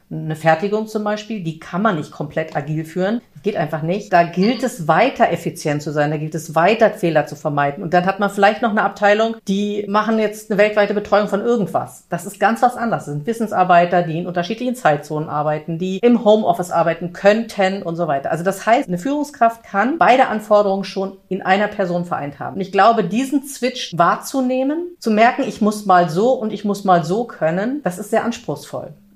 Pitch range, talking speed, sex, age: 175-220 Hz, 210 wpm, female, 50-69